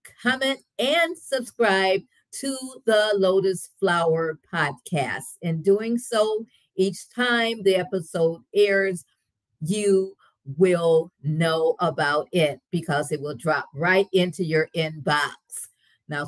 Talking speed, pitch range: 110 wpm, 145-195 Hz